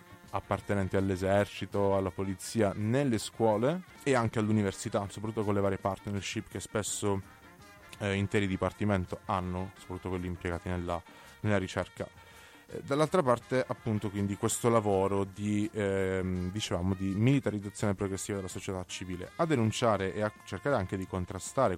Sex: male